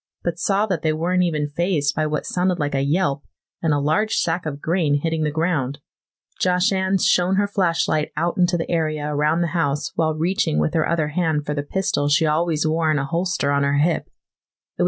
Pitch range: 145-180 Hz